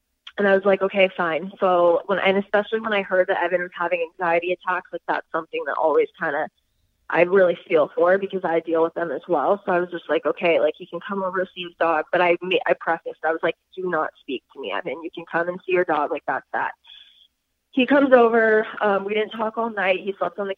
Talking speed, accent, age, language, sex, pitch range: 255 wpm, American, 20-39, English, female, 175-215 Hz